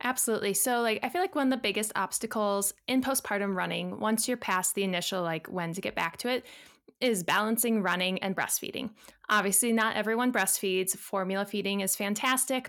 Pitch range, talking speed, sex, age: 190-245 Hz, 185 wpm, female, 20-39